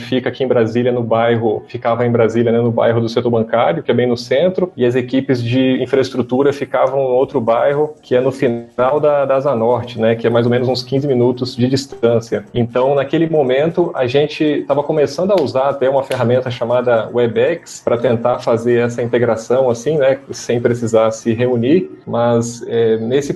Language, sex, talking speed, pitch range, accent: Portuguese, male, 195 wpm, 120-140 Hz, Brazilian